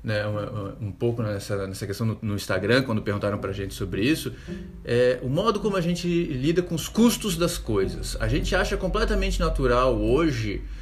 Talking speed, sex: 185 wpm, male